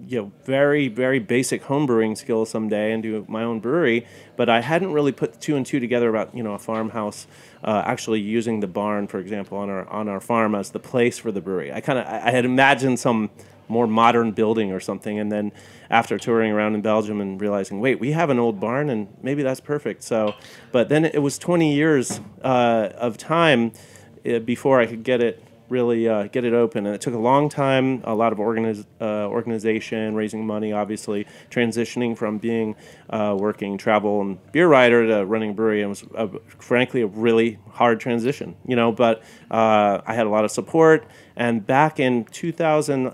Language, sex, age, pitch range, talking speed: English, male, 30-49, 105-125 Hz, 205 wpm